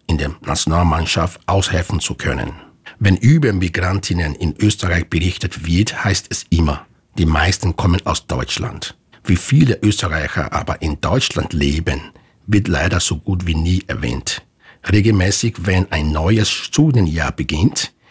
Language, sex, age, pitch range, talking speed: German, male, 60-79, 85-105 Hz, 135 wpm